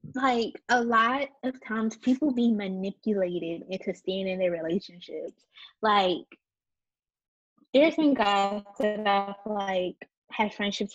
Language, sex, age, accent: English, female, 20-39, American